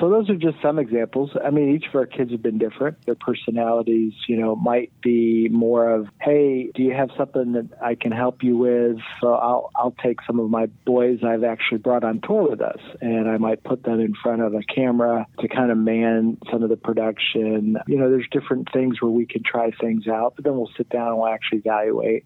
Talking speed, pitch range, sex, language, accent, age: 235 wpm, 110-125 Hz, male, English, American, 40-59